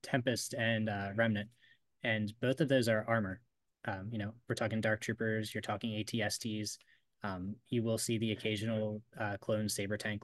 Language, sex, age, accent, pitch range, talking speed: English, male, 20-39, American, 105-115 Hz, 175 wpm